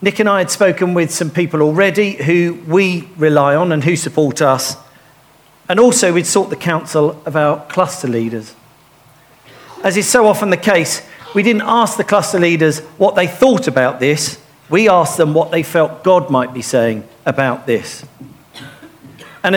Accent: British